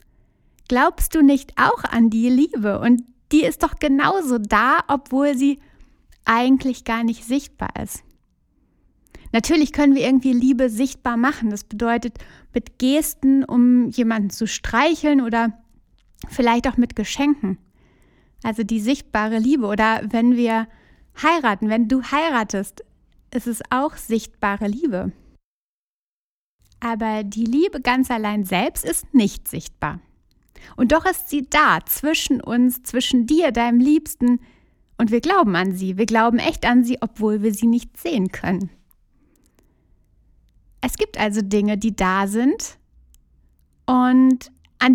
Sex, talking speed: female, 135 wpm